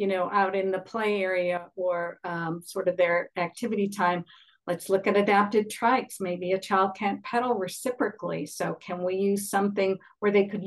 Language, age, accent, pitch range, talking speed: English, 50-69, American, 175-205 Hz, 185 wpm